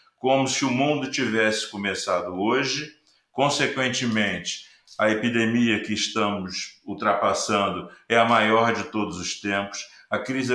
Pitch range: 105-125 Hz